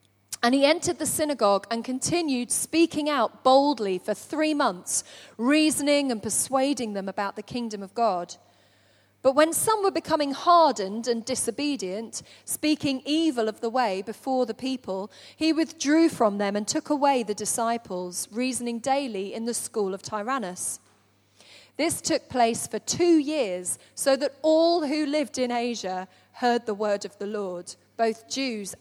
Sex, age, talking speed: female, 30-49, 155 wpm